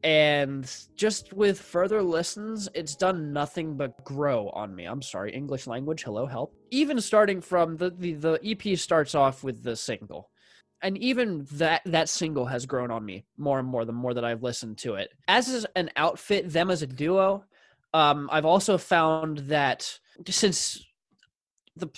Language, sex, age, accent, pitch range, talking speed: English, male, 20-39, American, 135-175 Hz, 175 wpm